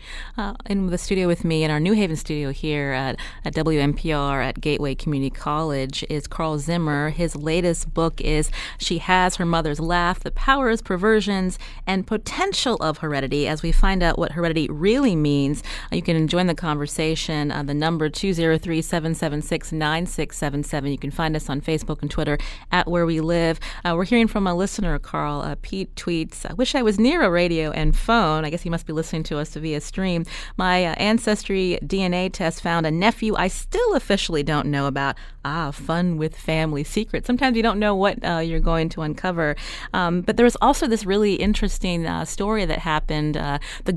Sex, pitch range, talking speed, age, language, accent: female, 155-200 Hz, 190 wpm, 30-49, English, American